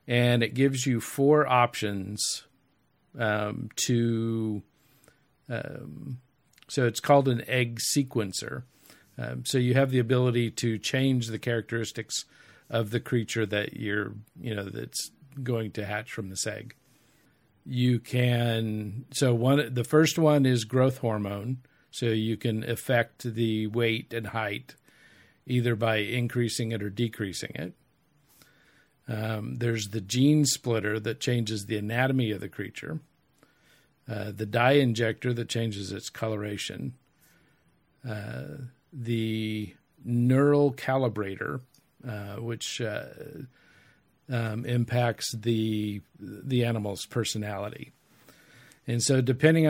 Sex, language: male, English